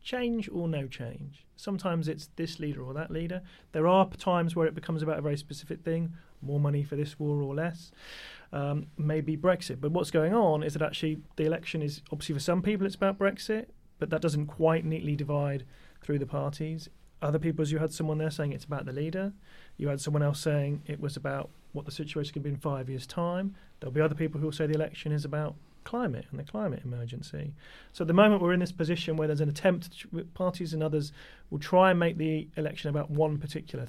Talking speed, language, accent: 230 wpm, English, British